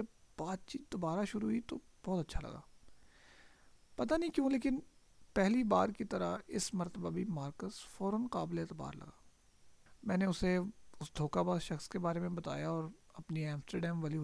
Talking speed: 165 wpm